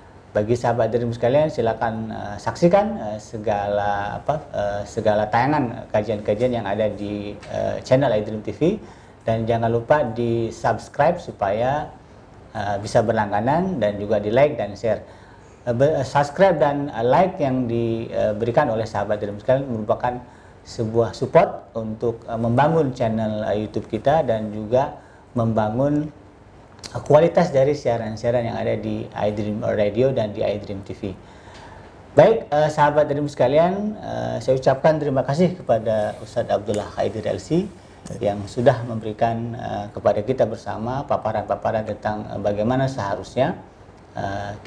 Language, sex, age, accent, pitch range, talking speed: Indonesian, male, 40-59, native, 105-135 Hz, 135 wpm